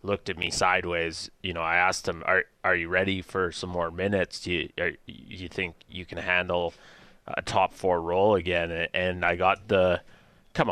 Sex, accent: male, American